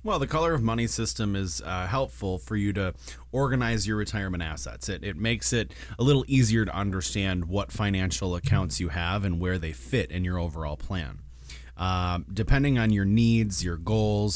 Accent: American